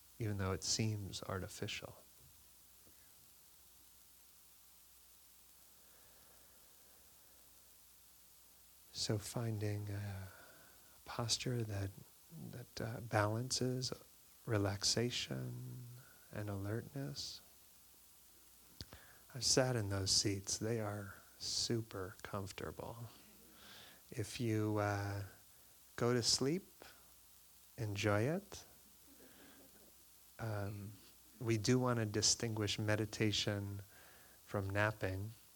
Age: 30-49